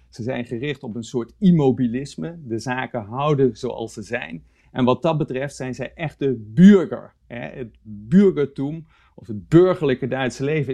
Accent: Dutch